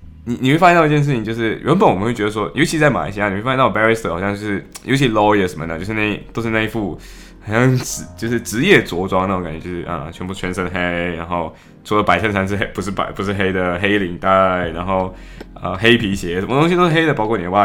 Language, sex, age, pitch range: Chinese, male, 10-29, 90-115 Hz